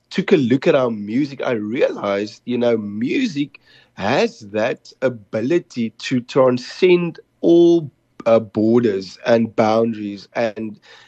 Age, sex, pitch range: 30-49, male, 110-155 Hz